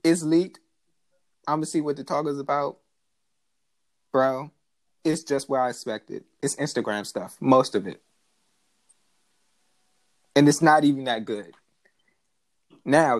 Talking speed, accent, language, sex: 125 wpm, American, English, male